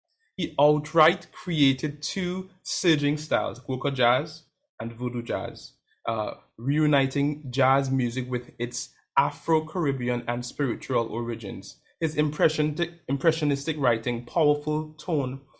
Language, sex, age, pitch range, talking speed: English, male, 20-39, 120-145 Hz, 100 wpm